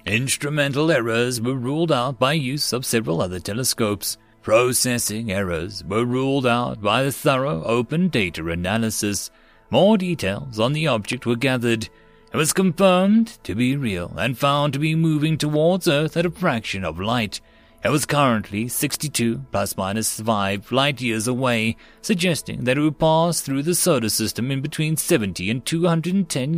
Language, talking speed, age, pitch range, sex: English, 160 wpm, 30-49, 110-155 Hz, male